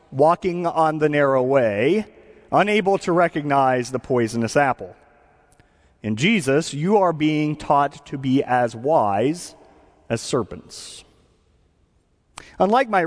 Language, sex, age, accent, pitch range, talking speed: English, male, 40-59, American, 120-195 Hz, 115 wpm